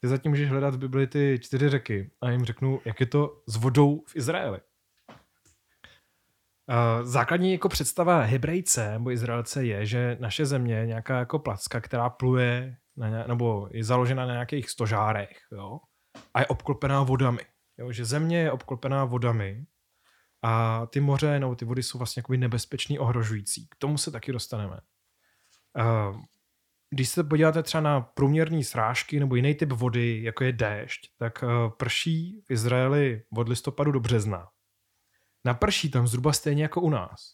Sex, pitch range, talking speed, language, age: male, 115-140 Hz, 160 wpm, Czech, 20-39